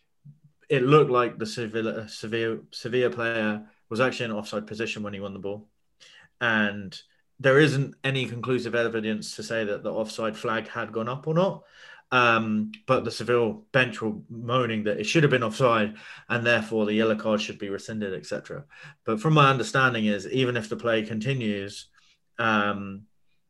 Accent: British